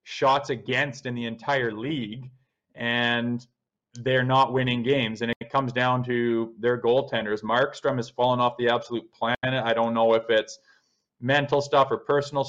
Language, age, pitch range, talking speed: English, 20-39, 115-135 Hz, 165 wpm